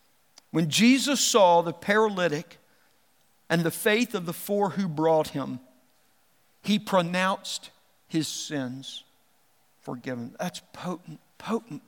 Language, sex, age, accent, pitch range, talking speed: English, male, 50-69, American, 150-205 Hz, 110 wpm